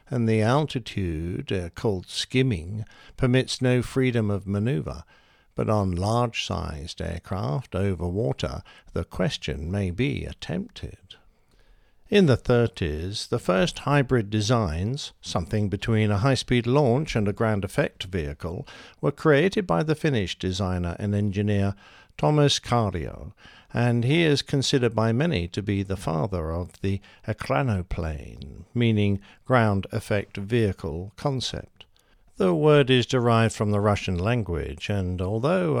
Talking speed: 130 wpm